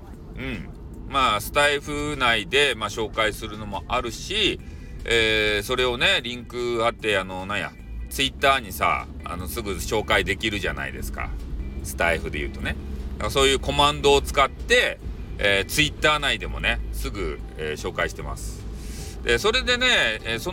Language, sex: Japanese, male